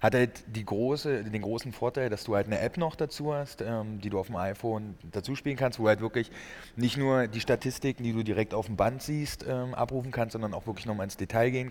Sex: male